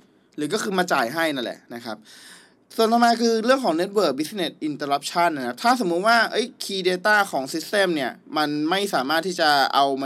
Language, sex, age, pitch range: Thai, male, 20-39, 150-190 Hz